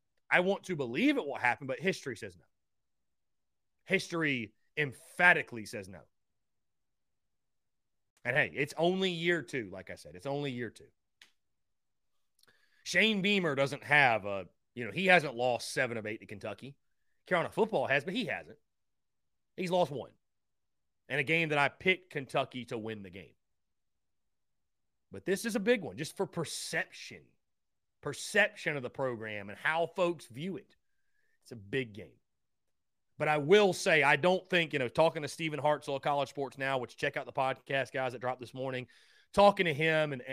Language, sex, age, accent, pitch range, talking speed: English, male, 30-49, American, 115-165 Hz, 170 wpm